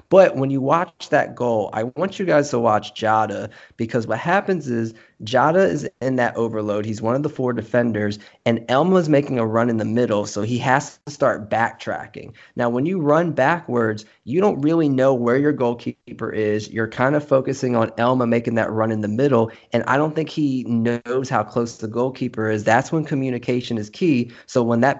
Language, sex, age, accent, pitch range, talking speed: English, male, 20-39, American, 115-135 Hz, 205 wpm